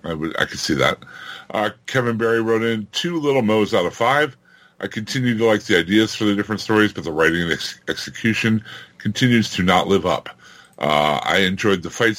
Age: 60-79